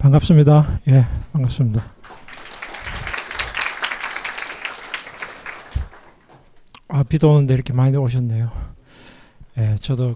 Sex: male